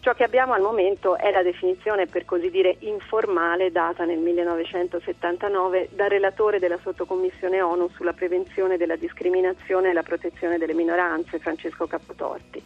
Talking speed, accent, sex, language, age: 145 wpm, native, female, Italian, 40-59